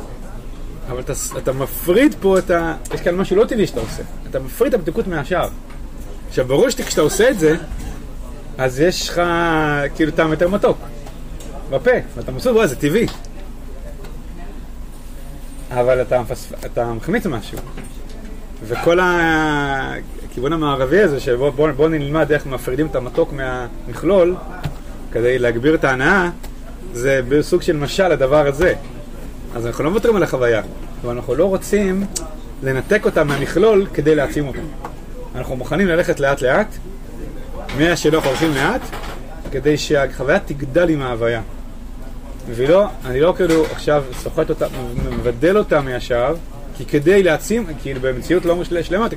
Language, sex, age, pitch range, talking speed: Hebrew, male, 30-49, 125-165 Hz, 135 wpm